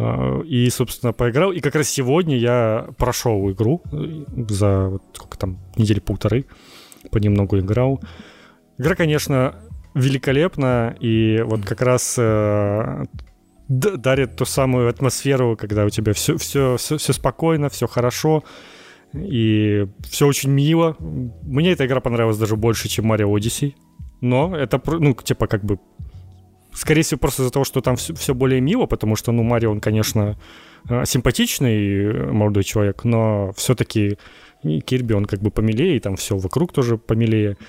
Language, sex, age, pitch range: Ukrainian, male, 20-39, 105-135 Hz